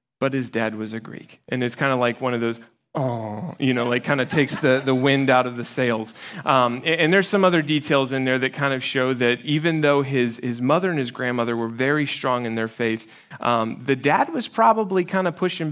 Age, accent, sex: 30-49, American, male